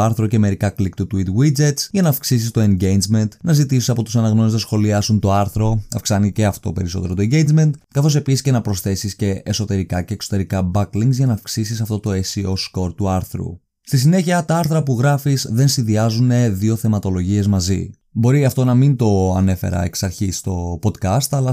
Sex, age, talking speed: male, 20-39, 190 wpm